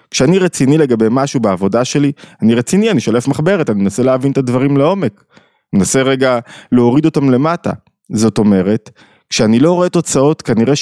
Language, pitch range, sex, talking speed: Hebrew, 110-145 Hz, male, 165 wpm